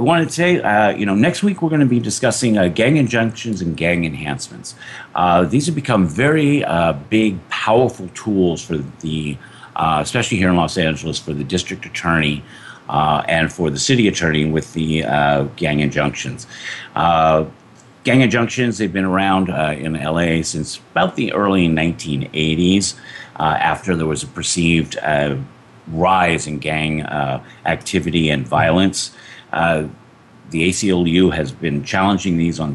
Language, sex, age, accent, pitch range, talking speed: English, male, 50-69, American, 80-110 Hz, 160 wpm